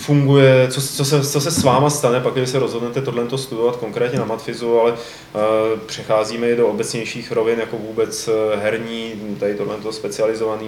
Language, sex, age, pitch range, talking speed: Czech, male, 20-39, 105-130 Hz, 175 wpm